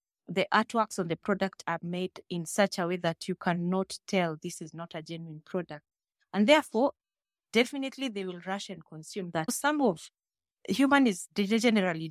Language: English